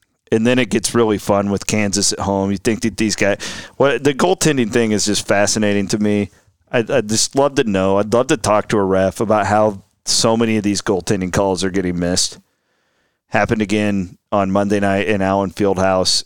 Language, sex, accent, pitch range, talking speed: English, male, American, 95-115 Hz, 205 wpm